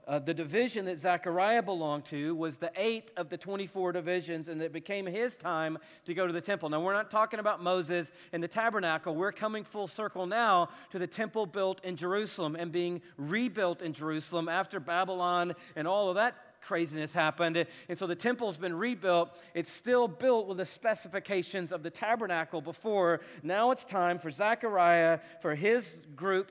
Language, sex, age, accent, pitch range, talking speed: English, male, 40-59, American, 160-200 Hz, 185 wpm